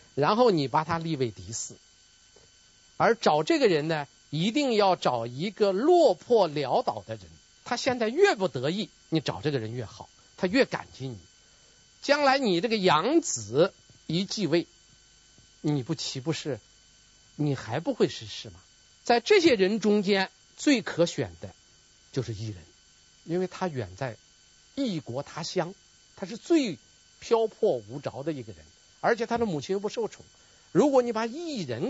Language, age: Chinese, 50-69